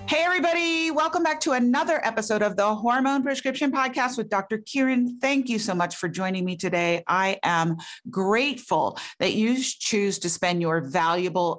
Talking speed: 170 wpm